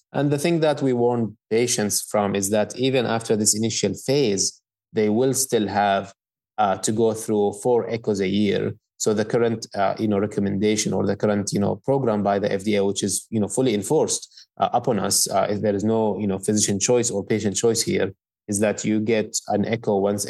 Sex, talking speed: male, 215 wpm